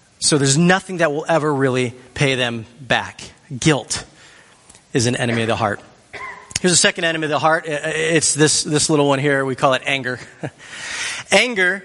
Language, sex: English, male